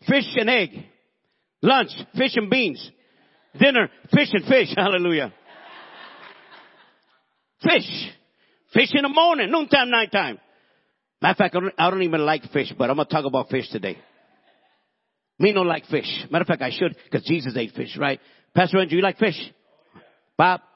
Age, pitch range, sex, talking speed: 50-69, 180-260 Hz, male, 160 wpm